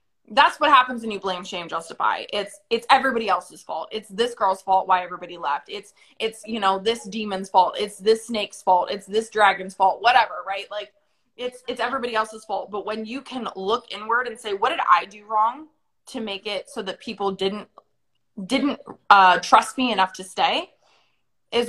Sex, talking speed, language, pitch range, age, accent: female, 195 wpm, English, 195-245 Hz, 20-39, American